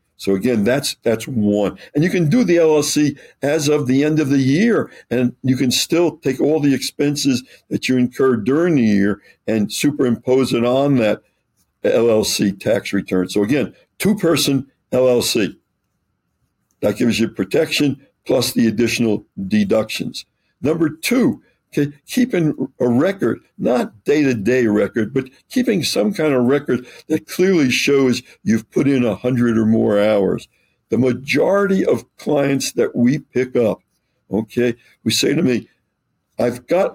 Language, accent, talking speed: English, American, 150 wpm